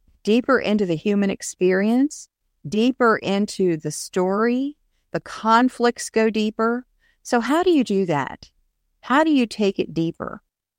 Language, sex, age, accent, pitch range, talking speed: English, female, 50-69, American, 175-240 Hz, 140 wpm